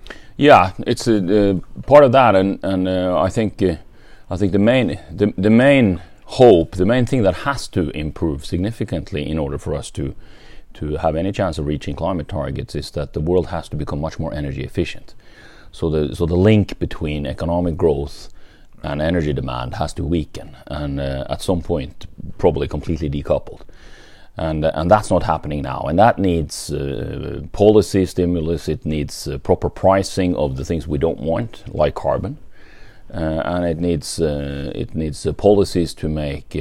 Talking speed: 180 wpm